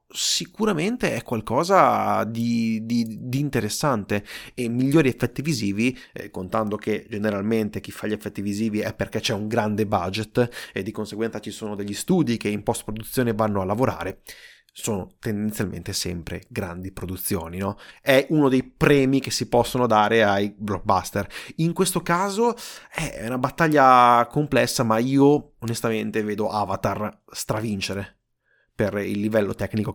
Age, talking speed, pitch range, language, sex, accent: 30-49, 145 wpm, 105-130 Hz, Italian, male, native